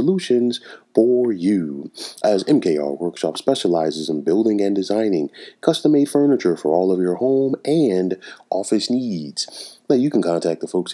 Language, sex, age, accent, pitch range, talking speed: English, male, 30-49, American, 90-115 Hz, 145 wpm